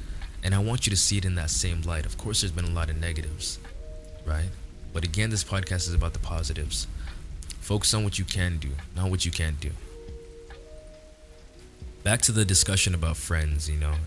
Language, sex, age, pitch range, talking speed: English, male, 20-39, 75-90 Hz, 200 wpm